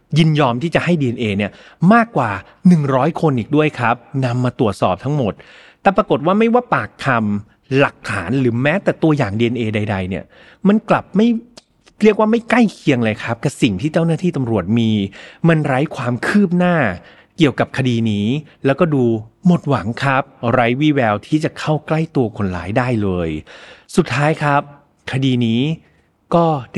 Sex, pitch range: male, 115-155 Hz